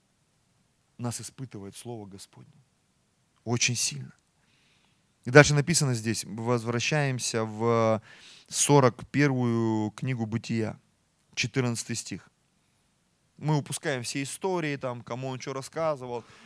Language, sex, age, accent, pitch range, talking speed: Russian, male, 30-49, native, 135-215 Hz, 90 wpm